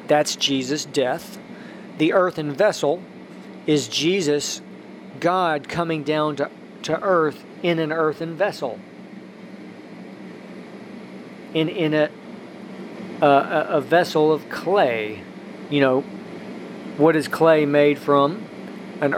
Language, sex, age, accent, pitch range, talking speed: English, male, 40-59, American, 140-170 Hz, 105 wpm